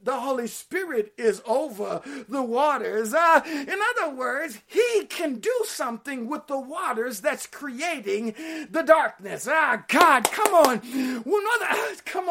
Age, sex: 50-69, male